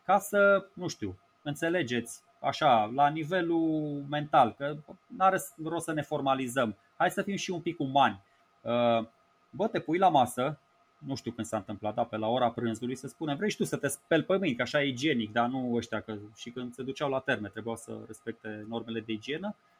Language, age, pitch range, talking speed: Romanian, 20-39, 130-180 Hz, 205 wpm